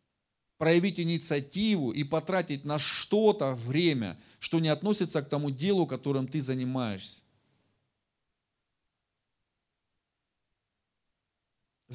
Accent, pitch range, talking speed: native, 150-205 Hz, 80 wpm